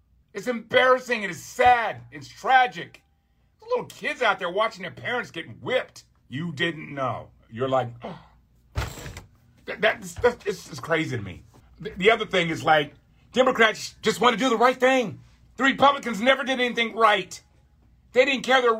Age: 50-69